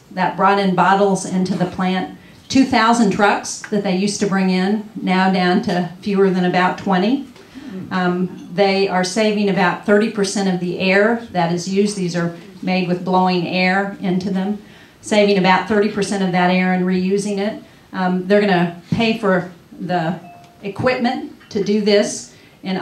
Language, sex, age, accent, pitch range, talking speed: English, female, 40-59, American, 180-205 Hz, 165 wpm